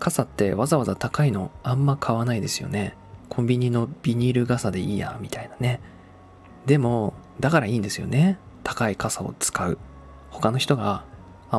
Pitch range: 100-130 Hz